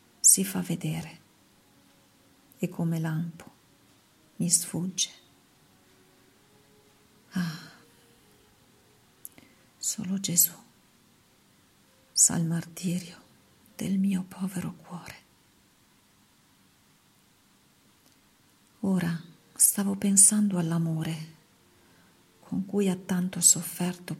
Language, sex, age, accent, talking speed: Italian, female, 50-69, native, 65 wpm